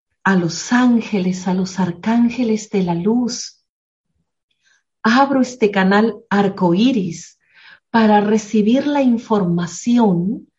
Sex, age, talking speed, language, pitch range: female, 40-59, 100 wpm, Spanish, 205-285 Hz